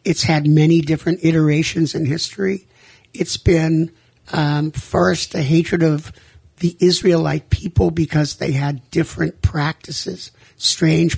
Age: 60-79